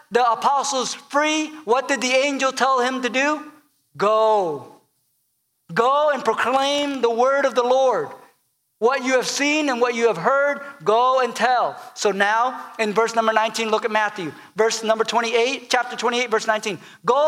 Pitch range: 180-255 Hz